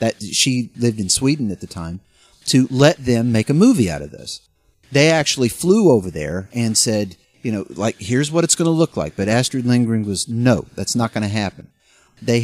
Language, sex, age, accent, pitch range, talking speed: English, male, 40-59, American, 100-135 Hz, 215 wpm